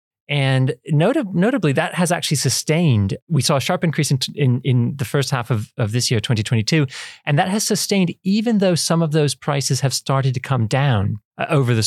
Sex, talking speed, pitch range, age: male, 210 wpm, 115-140 Hz, 30-49